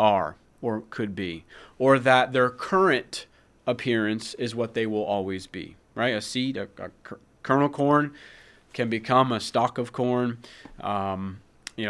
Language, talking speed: English, 150 wpm